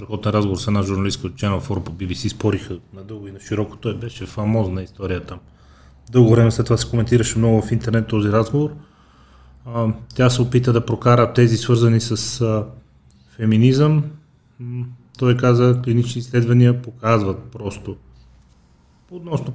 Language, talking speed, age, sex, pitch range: Bulgarian, 145 wpm, 30-49, male, 100-120 Hz